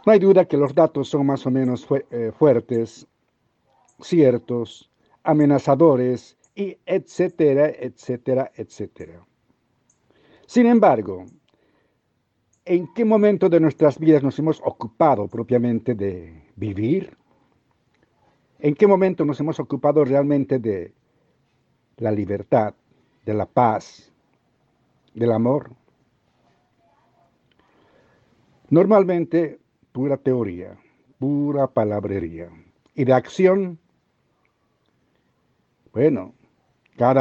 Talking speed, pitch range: 90 wpm, 120-165 Hz